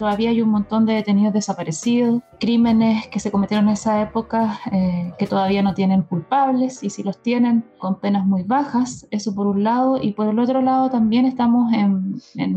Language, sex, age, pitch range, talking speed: Spanish, female, 20-39, 205-245 Hz, 195 wpm